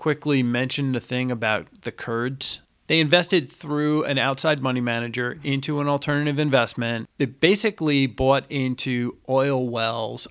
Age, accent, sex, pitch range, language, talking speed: 40-59, American, male, 125-150 Hz, English, 140 wpm